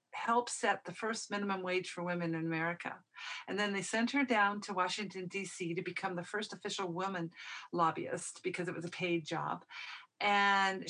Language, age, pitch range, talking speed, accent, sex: English, 50-69, 185-225 Hz, 180 wpm, American, female